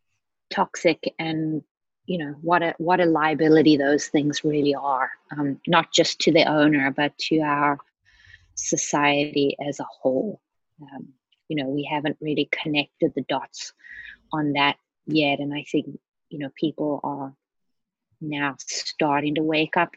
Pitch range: 140-165 Hz